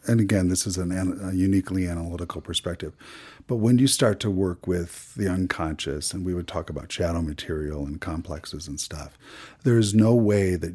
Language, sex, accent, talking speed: English, male, American, 185 wpm